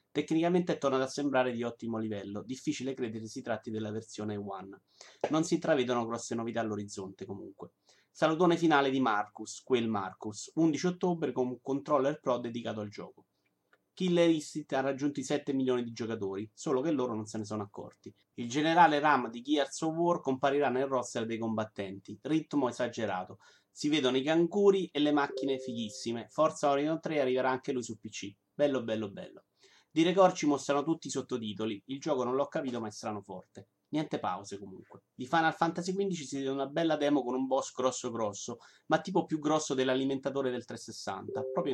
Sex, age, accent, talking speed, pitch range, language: male, 30-49, native, 180 wpm, 115-150 Hz, Italian